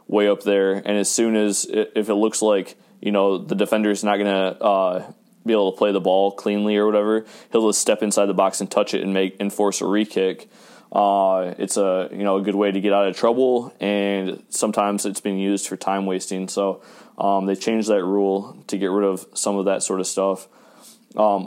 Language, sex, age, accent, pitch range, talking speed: English, male, 20-39, American, 100-105 Hz, 225 wpm